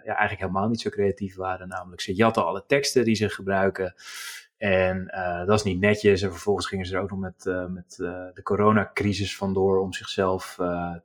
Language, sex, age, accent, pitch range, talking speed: Dutch, male, 20-39, Dutch, 95-110 Hz, 200 wpm